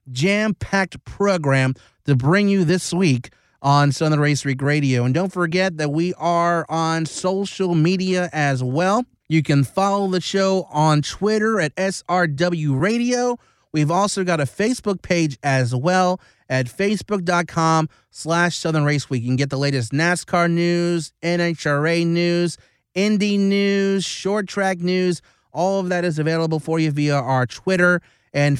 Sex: male